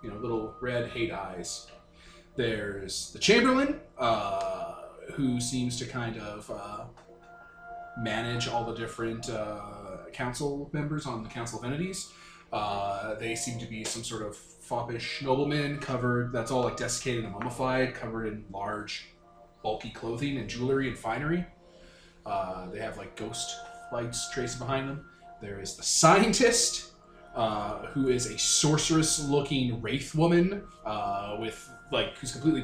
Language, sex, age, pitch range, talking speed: English, male, 20-39, 115-150 Hz, 145 wpm